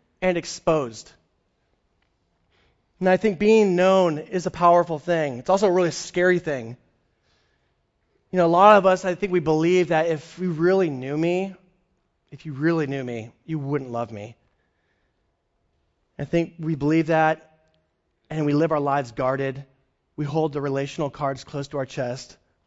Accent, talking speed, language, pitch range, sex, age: American, 165 wpm, English, 140-195 Hz, male, 30-49